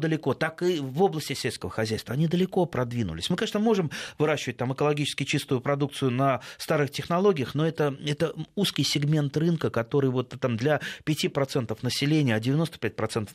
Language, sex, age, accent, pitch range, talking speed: Russian, male, 30-49, native, 125-160 Hz, 155 wpm